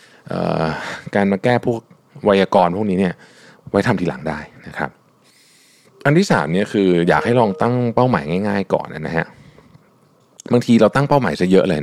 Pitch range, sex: 90-115 Hz, male